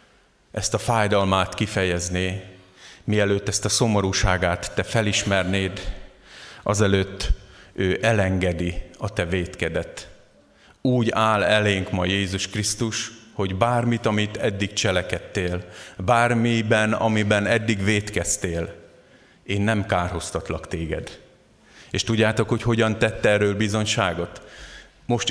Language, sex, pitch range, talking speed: Hungarian, male, 95-115 Hz, 100 wpm